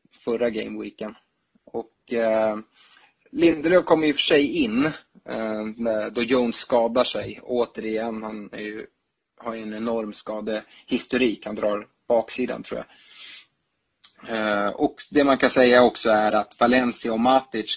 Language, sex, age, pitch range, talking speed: Swedish, male, 30-49, 110-130 Hz, 130 wpm